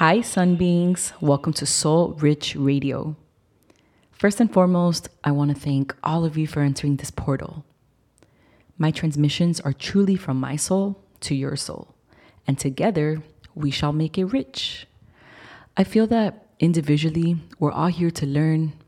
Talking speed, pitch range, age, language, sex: 155 wpm, 135-160 Hz, 30-49, English, female